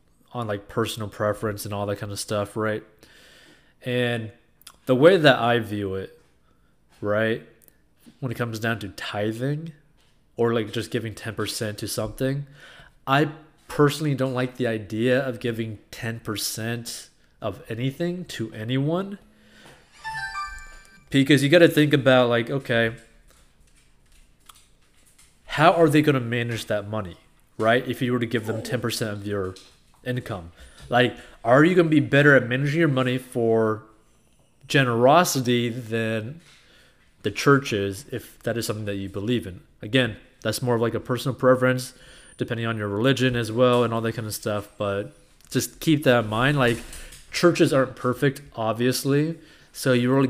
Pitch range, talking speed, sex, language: 110-130 Hz, 155 wpm, male, English